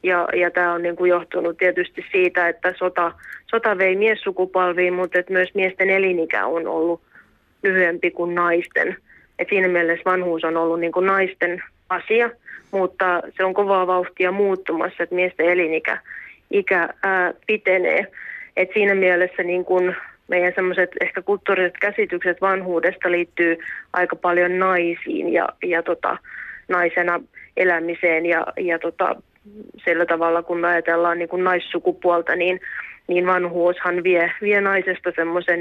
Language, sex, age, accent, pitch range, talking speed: Finnish, female, 20-39, native, 175-185 Hz, 130 wpm